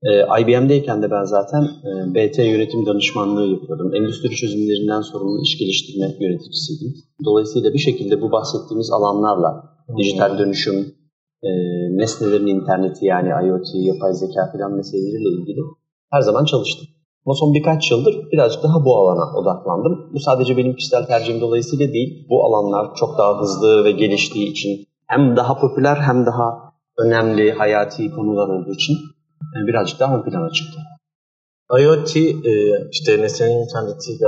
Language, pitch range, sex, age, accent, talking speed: Turkish, 110-165 Hz, male, 30-49, native, 135 wpm